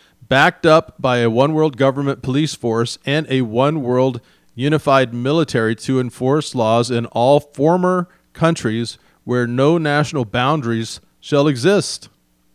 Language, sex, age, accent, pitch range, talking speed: English, male, 40-59, American, 120-160 Hz, 125 wpm